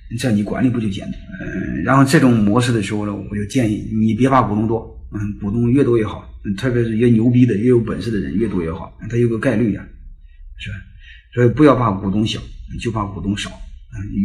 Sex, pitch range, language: male, 90-115 Hz, Chinese